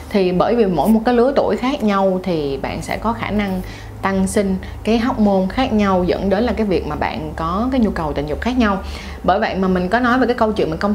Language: Vietnamese